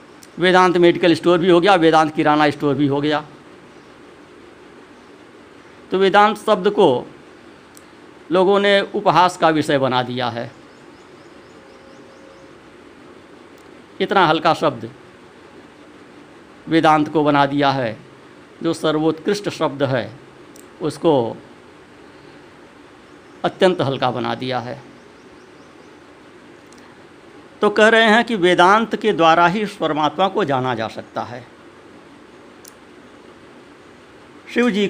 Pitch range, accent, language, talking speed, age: 145-190 Hz, native, Hindi, 100 wpm, 50-69